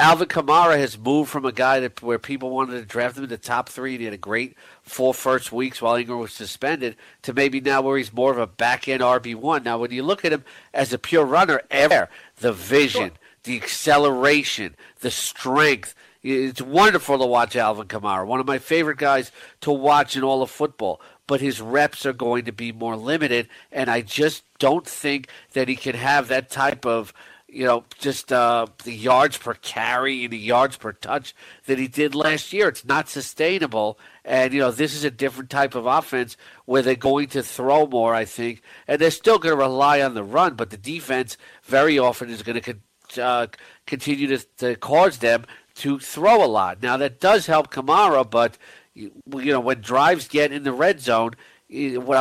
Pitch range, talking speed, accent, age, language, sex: 120-140 Hz, 205 wpm, American, 50-69, English, male